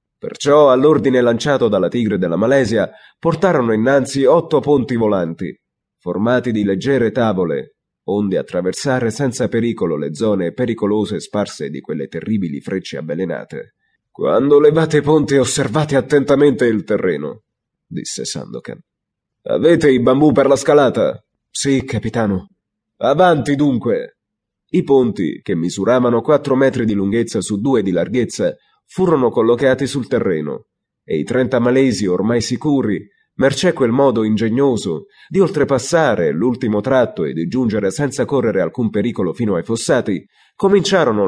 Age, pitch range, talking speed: 30-49, 110-140 Hz, 130 wpm